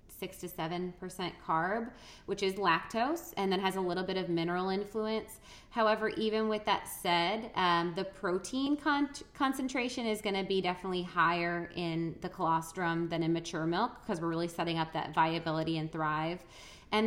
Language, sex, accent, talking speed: English, female, American, 170 wpm